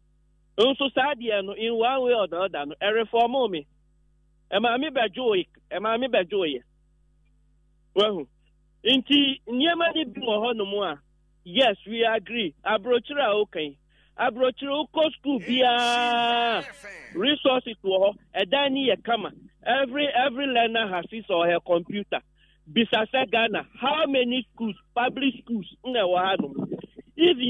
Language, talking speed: English, 130 wpm